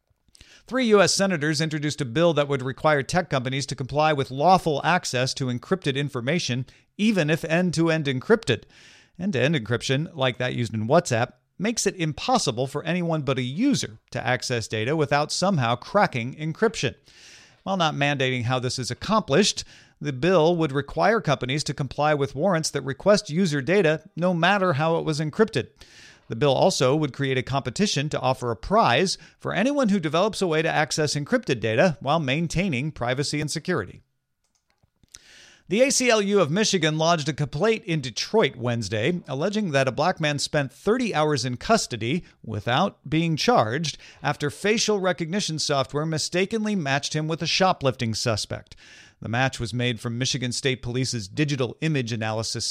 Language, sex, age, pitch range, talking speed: English, male, 40-59, 130-175 Hz, 160 wpm